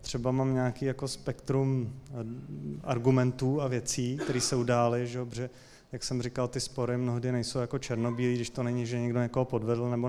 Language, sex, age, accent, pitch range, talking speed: Czech, male, 30-49, native, 120-130 Hz, 170 wpm